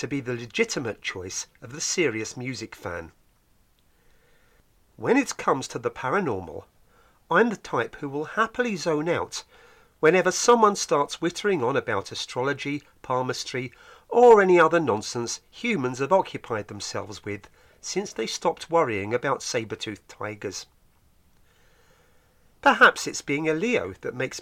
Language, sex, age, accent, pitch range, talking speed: English, male, 40-59, British, 125-190 Hz, 135 wpm